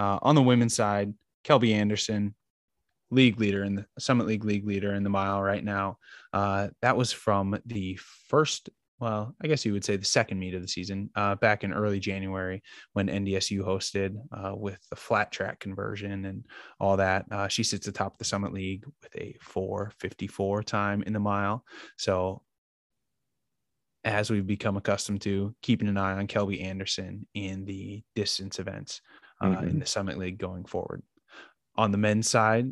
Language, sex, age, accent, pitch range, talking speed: English, male, 20-39, American, 100-110 Hz, 175 wpm